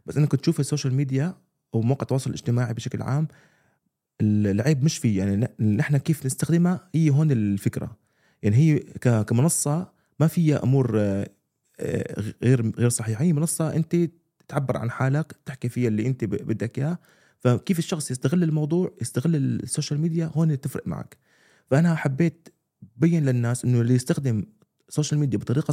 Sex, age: male, 30-49